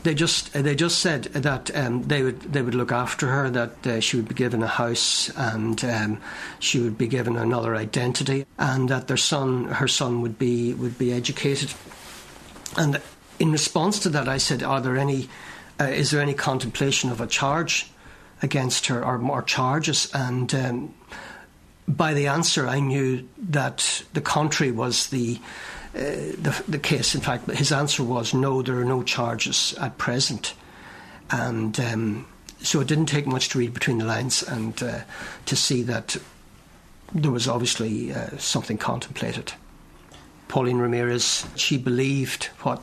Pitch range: 120-140 Hz